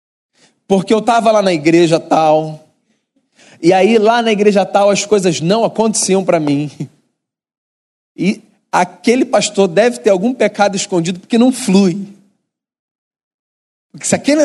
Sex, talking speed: male, 135 wpm